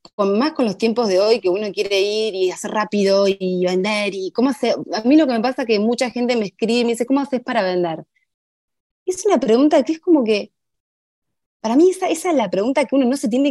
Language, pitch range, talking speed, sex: Spanish, 175-250 Hz, 255 wpm, female